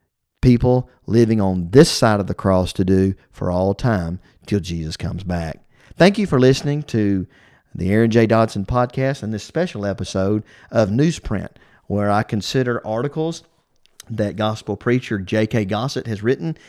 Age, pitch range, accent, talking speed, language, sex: 40-59, 95-130 Hz, American, 160 wpm, English, male